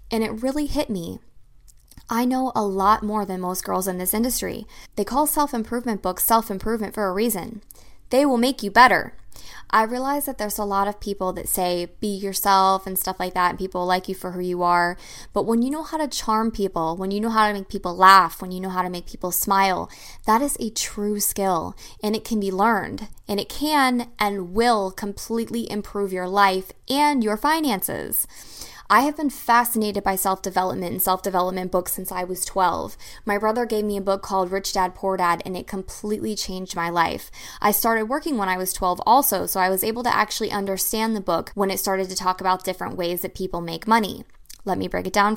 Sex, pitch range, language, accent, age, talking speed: female, 190-225 Hz, English, American, 20-39, 215 wpm